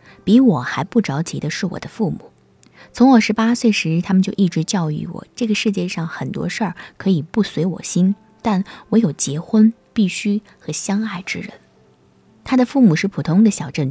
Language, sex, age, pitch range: Chinese, female, 20-39, 175-220 Hz